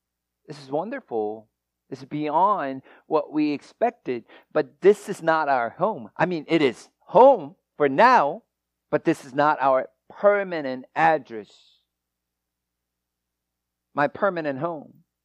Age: 50-69